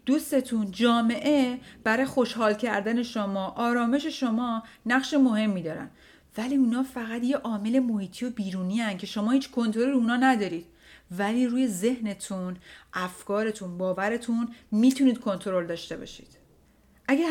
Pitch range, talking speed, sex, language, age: 195-250 Hz, 125 wpm, female, Persian, 30-49